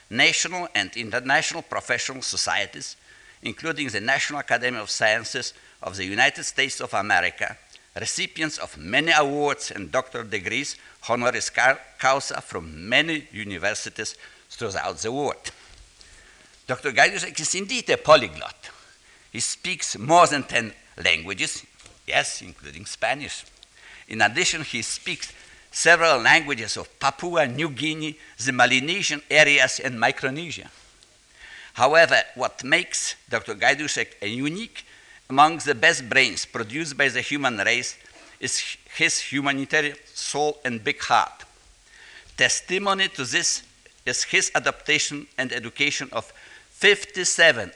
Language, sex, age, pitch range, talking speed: Spanish, male, 60-79, 125-160 Hz, 120 wpm